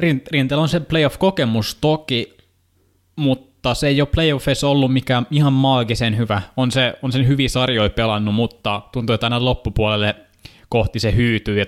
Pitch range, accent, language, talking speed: 100-125 Hz, native, Finnish, 160 wpm